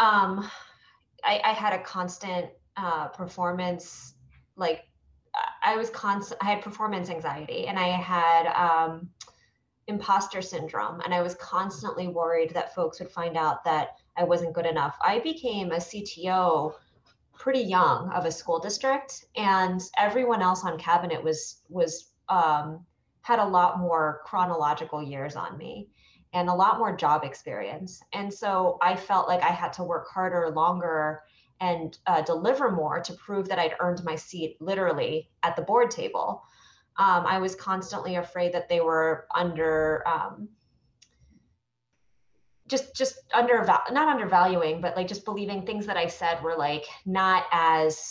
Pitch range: 165-200 Hz